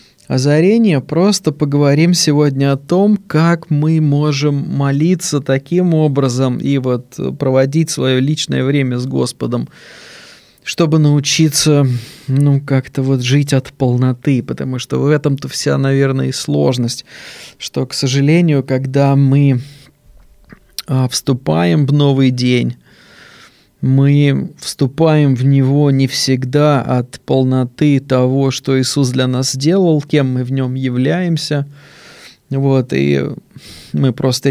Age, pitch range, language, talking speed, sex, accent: 20-39, 130-150 Hz, Russian, 120 wpm, male, native